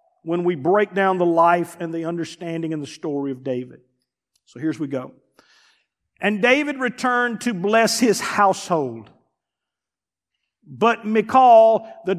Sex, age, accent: male, 50-69, American